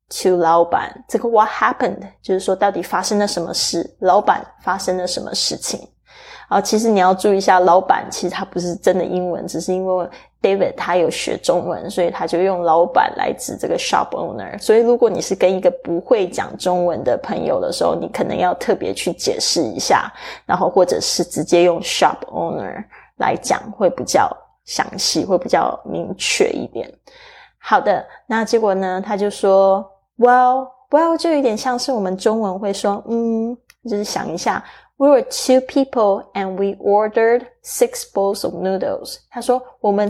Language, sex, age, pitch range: Chinese, female, 20-39, 185-250 Hz